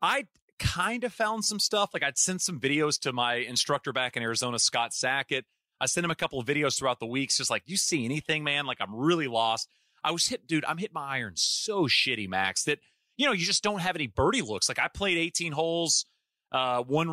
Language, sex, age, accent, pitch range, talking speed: English, male, 30-49, American, 130-175 Hz, 235 wpm